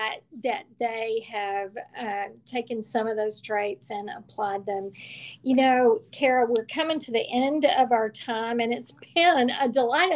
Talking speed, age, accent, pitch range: 165 wpm, 50-69, American, 230-275 Hz